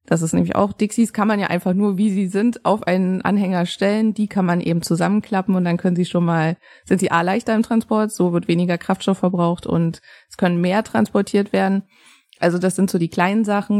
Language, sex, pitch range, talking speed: German, female, 175-205 Hz, 225 wpm